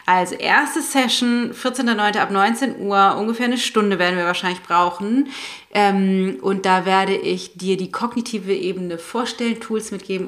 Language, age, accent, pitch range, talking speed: German, 30-49, German, 190-235 Hz, 145 wpm